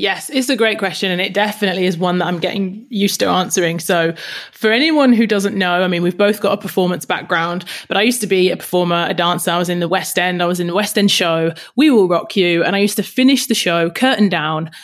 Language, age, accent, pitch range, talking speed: English, 30-49, British, 180-230 Hz, 265 wpm